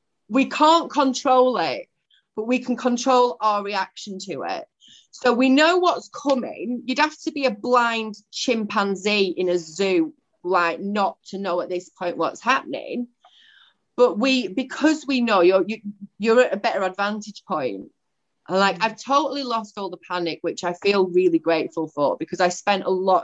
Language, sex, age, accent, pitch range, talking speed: English, female, 30-49, British, 160-210 Hz, 175 wpm